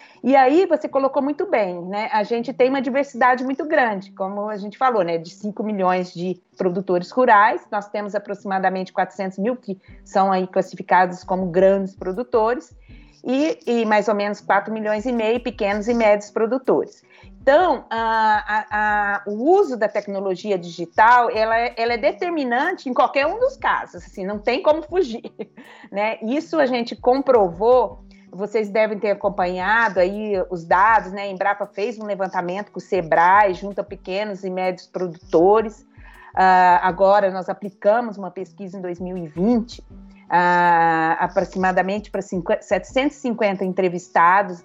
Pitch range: 185-240 Hz